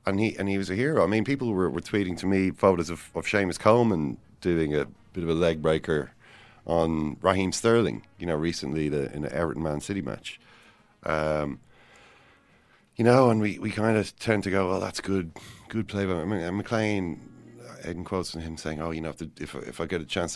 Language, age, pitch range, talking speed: English, 40-59, 80-105 Hz, 235 wpm